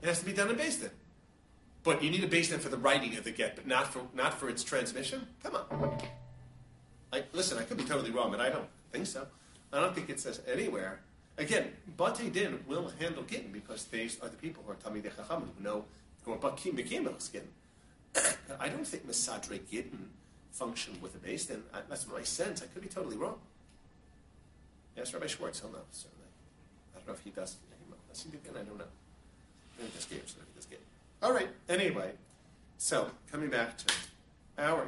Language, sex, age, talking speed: English, male, 40-59, 190 wpm